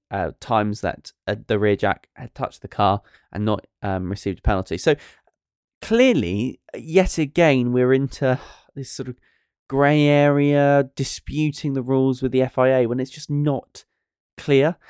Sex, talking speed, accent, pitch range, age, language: male, 155 wpm, British, 110-150 Hz, 10-29, English